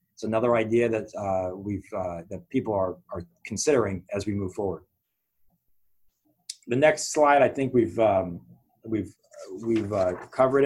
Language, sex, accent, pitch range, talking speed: English, male, American, 110-125 Hz, 150 wpm